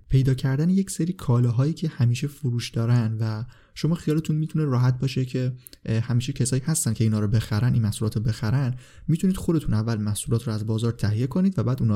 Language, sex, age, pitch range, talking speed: Persian, male, 20-39, 115-155 Hz, 190 wpm